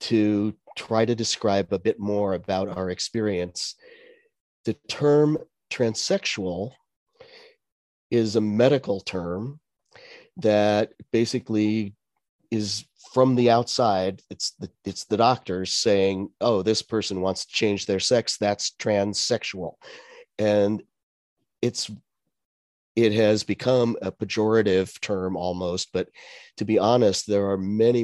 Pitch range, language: 100-120 Hz, English